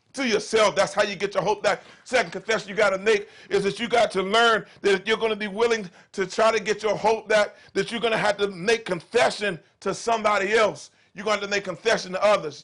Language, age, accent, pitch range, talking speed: English, 40-59, American, 195-230 Hz, 245 wpm